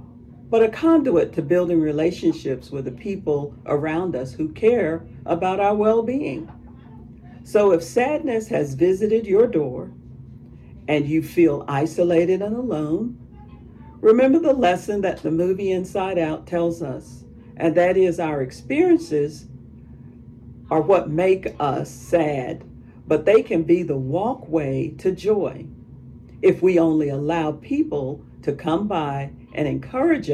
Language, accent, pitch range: English, American, 140-185 Hz